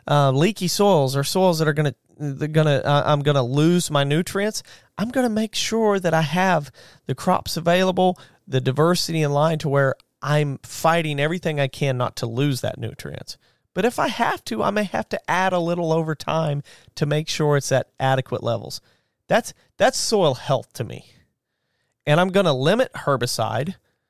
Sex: male